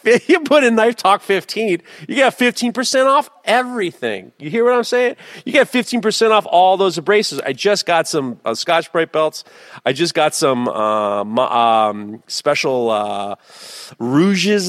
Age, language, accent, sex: 40-59, English, American, male